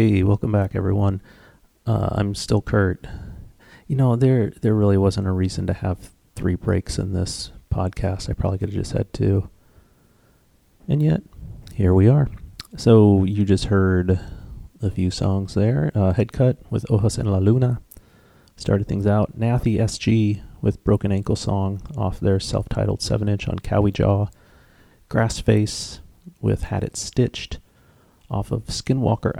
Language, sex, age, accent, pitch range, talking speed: English, male, 30-49, American, 95-115 Hz, 150 wpm